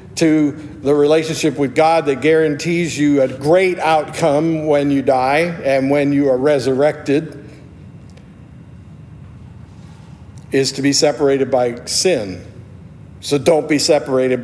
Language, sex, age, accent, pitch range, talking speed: English, male, 50-69, American, 130-155 Hz, 120 wpm